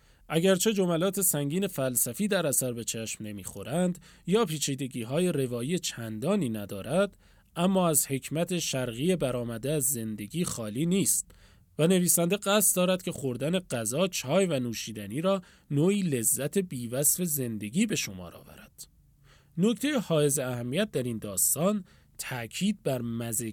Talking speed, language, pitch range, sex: 130 wpm, Persian, 120-170 Hz, male